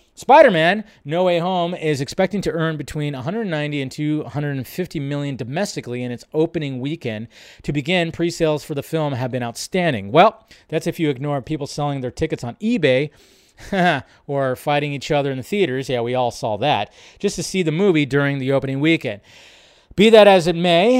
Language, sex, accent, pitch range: English, male, American, 135-175 Hz